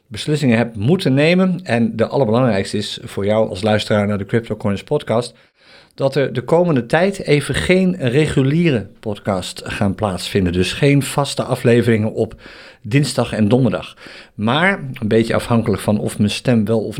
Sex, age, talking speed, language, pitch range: male, 50-69, 160 wpm, Dutch, 110-140 Hz